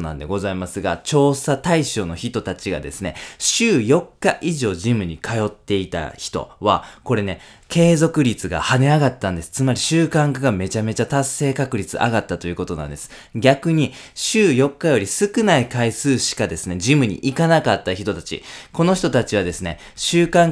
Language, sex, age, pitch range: Japanese, male, 20-39, 100-145 Hz